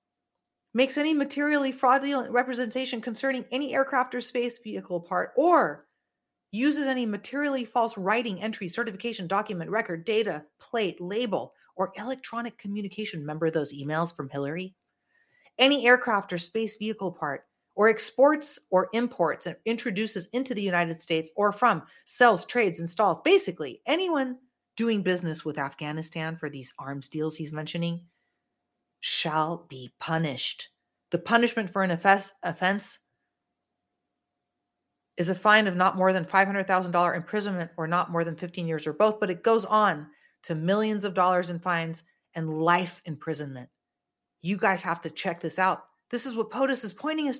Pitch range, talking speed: 170-245 Hz, 150 wpm